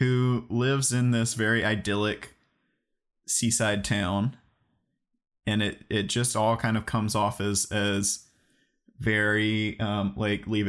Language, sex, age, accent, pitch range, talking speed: English, male, 20-39, American, 105-120 Hz, 130 wpm